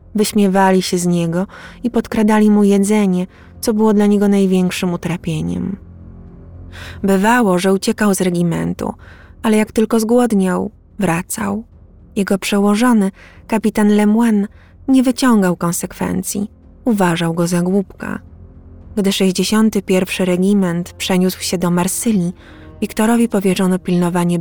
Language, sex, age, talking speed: Polish, female, 20-39, 110 wpm